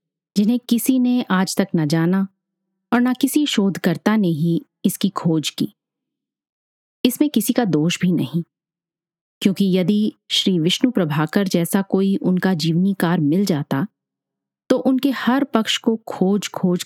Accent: native